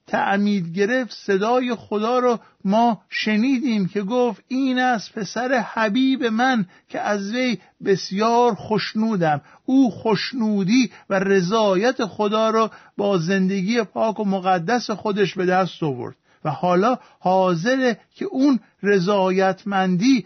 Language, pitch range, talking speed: Persian, 195-245 Hz, 120 wpm